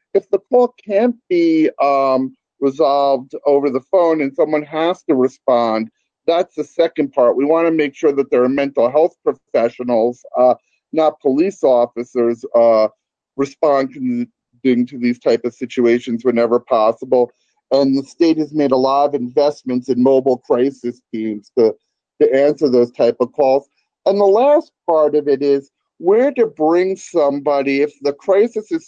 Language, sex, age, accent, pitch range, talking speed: English, male, 40-59, American, 130-175 Hz, 160 wpm